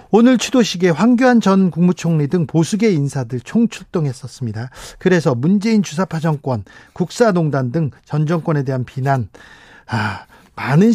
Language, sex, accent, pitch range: Korean, male, native, 140-185 Hz